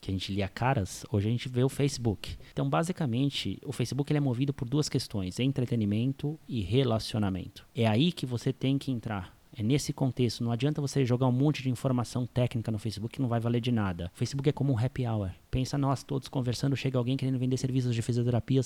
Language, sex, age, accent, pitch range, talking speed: Portuguese, male, 20-39, Brazilian, 120-145 Hz, 220 wpm